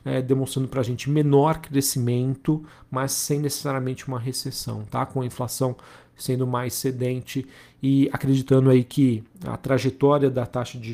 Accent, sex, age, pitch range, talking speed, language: Brazilian, male, 40-59, 120-135 Hz, 150 wpm, Portuguese